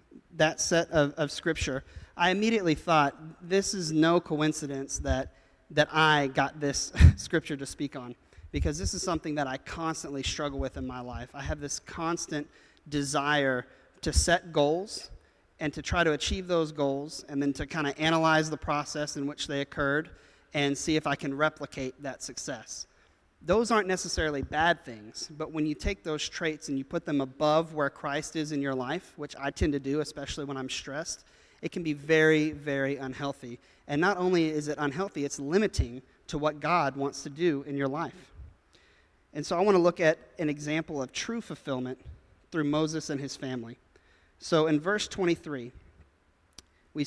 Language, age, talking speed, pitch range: English, 30-49, 185 wpm, 140-160 Hz